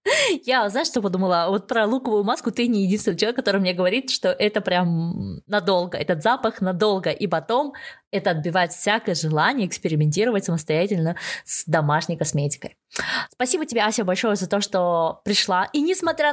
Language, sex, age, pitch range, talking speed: Russian, female, 20-39, 185-255 Hz, 160 wpm